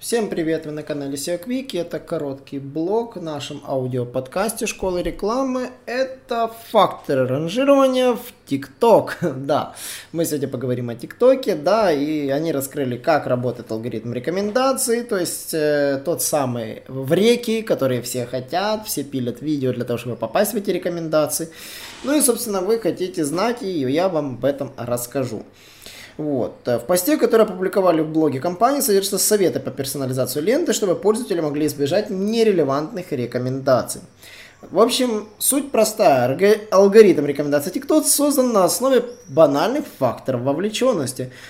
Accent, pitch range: native, 135-215 Hz